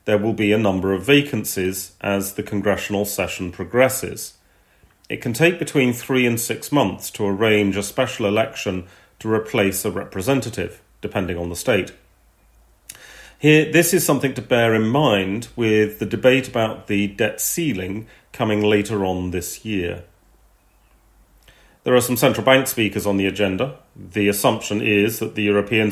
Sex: male